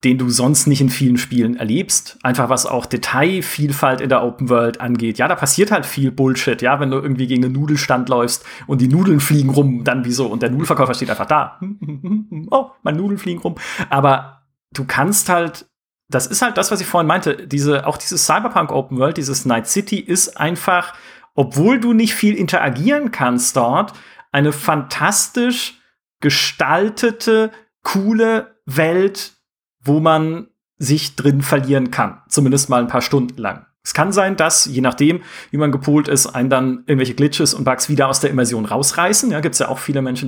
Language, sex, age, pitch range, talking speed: German, male, 40-59, 135-170 Hz, 185 wpm